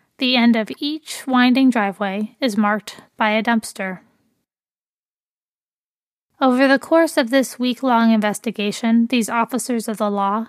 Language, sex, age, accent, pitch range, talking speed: English, female, 20-39, American, 215-260 Hz, 130 wpm